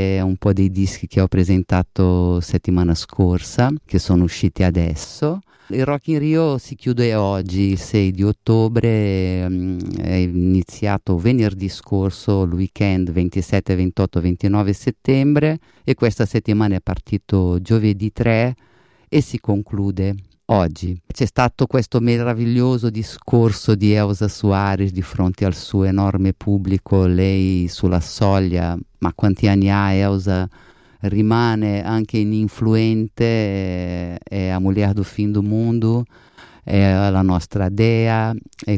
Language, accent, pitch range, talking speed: Italian, native, 95-110 Hz, 125 wpm